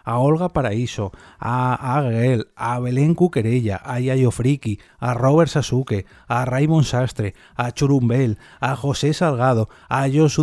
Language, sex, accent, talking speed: Spanish, male, Spanish, 145 wpm